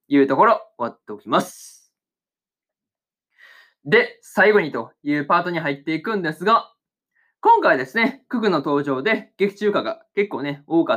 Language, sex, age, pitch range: Japanese, male, 20-39, 140-210 Hz